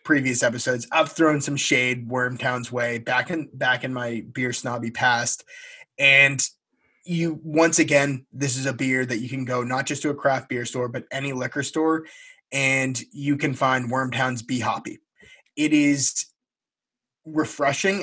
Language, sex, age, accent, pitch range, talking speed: English, male, 20-39, American, 125-145 Hz, 165 wpm